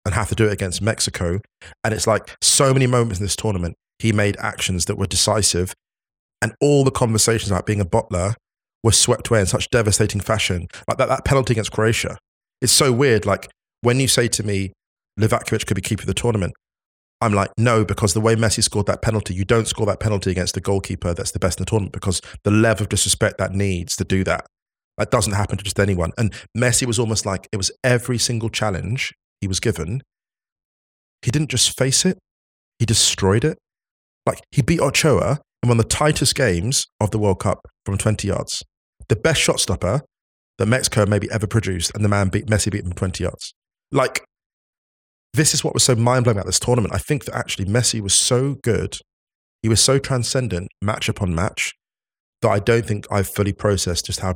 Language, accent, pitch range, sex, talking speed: English, British, 95-120 Hz, male, 210 wpm